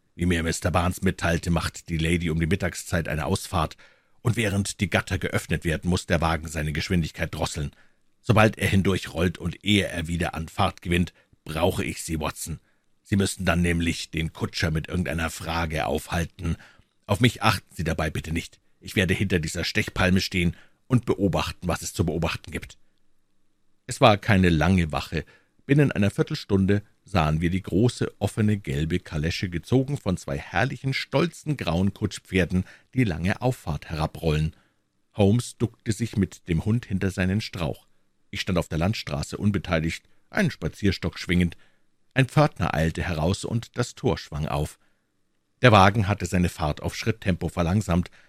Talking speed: 160 wpm